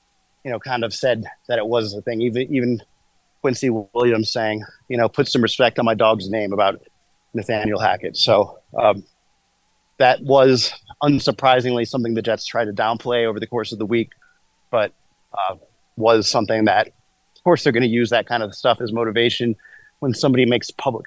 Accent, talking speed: American, 185 wpm